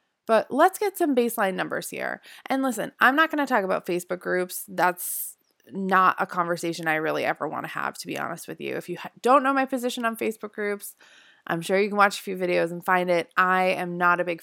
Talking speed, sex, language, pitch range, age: 235 wpm, female, English, 175-230 Hz, 20-39